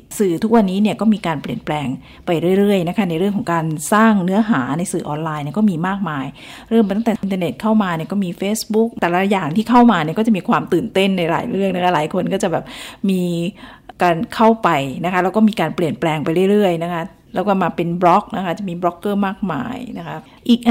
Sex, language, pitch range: female, Thai, 165-215 Hz